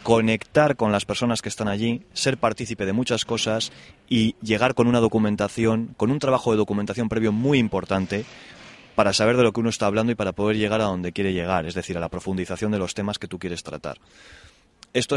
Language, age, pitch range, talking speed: Spanish, 20-39, 95-110 Hz, 215 wpm